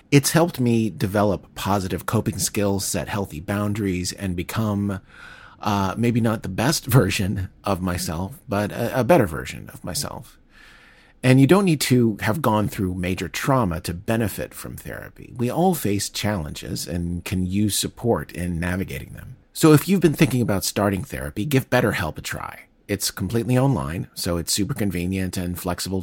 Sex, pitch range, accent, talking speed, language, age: male, 90-120 Hz, American, 170 wpm, English, 40-59